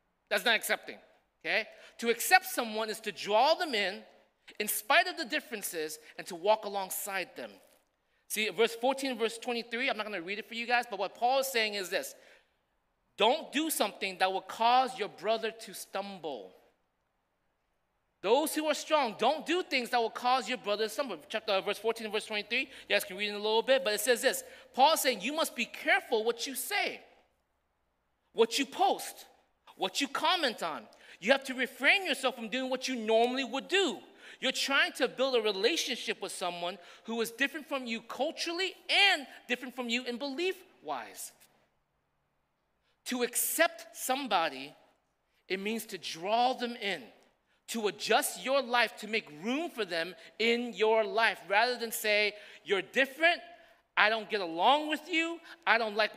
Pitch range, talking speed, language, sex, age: 210-275 Hz, 185 wpm, English, male, 30-49